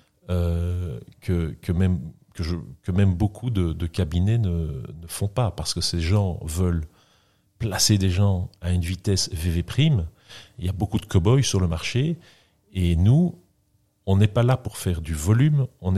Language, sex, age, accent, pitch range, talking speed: French, male, 40-59, French, 95-115 Hz, 185 wpm